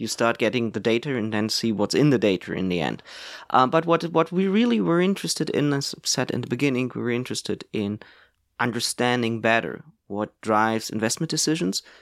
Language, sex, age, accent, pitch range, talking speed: Danish, male, 20-39, German, 115-170 Hz, 200 wpm